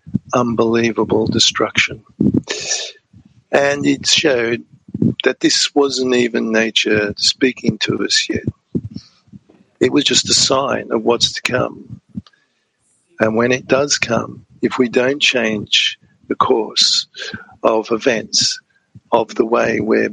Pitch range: 115-135 Hz